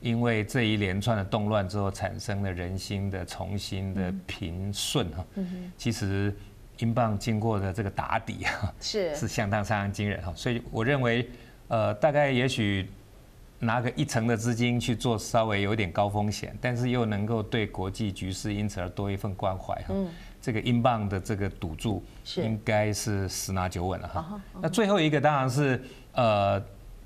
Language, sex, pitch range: Chinese, male, 95-115 Hz